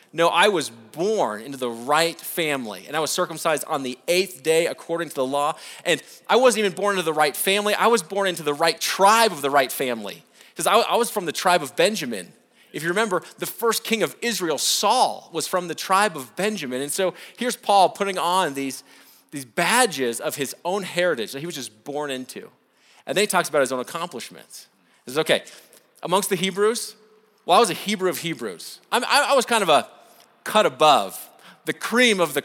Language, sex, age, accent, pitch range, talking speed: English, male, 30-49, American, 150-205 Hz, 210 wpm